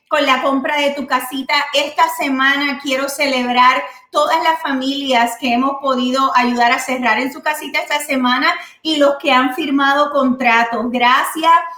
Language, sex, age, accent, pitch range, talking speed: Spanish, female, 30-49, American, 260-295 Hz, 160 wpm